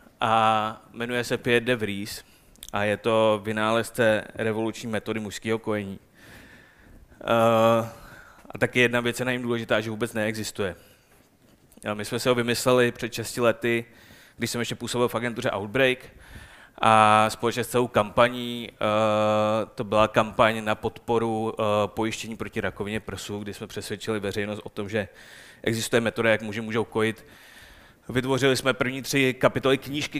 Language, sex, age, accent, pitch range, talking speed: Czech, male, 20-39, native, 110-125 Hz, 145 wpm